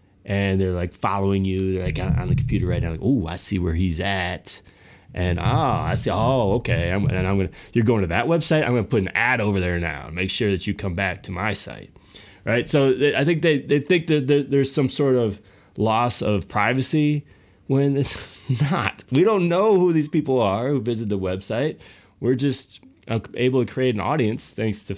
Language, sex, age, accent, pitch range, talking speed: English, male, 30-49, American, 100-135 Hz, 220 wpm